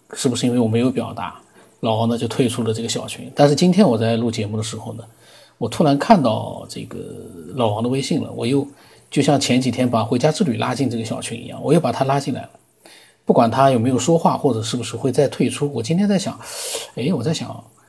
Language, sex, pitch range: Chinese, male, 115-140 Hz